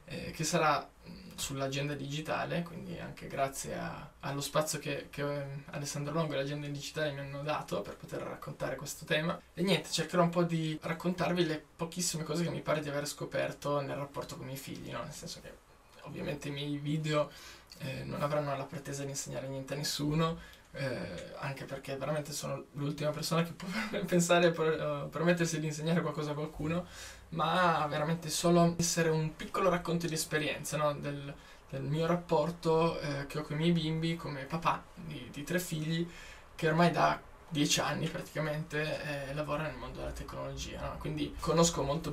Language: Italian